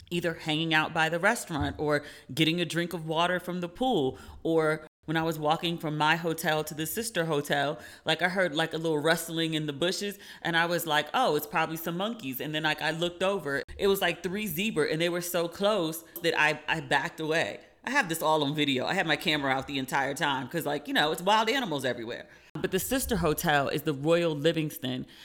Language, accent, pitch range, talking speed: English, American, 145-170 Hz, 230 wpm